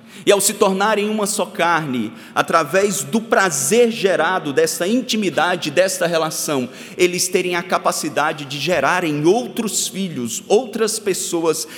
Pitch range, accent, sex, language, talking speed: 180-235 Hz, Brazilian, male, Portuguese, 125 wpm